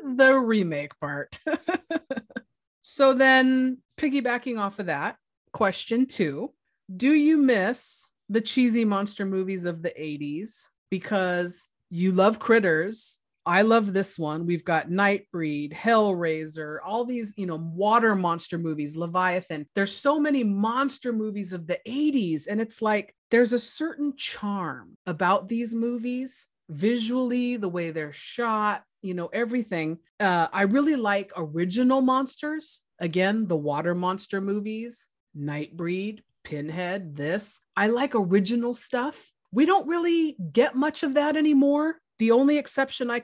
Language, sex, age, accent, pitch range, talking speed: English, female, 30-49, American, 175-245 Hz, 135 wpm